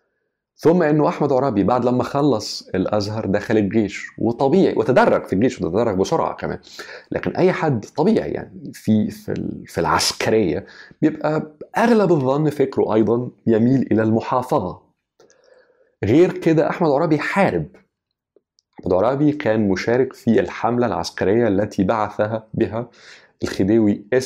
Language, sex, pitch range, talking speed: Arabic, male, 105-150 Hz, 120 wpm